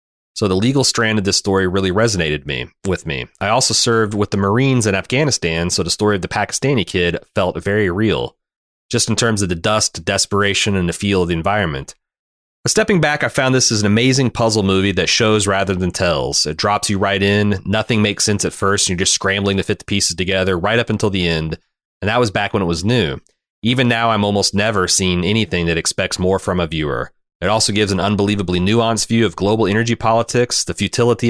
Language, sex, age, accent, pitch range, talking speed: English, male, 30-49, American, 95-115 Hz, 225 wpm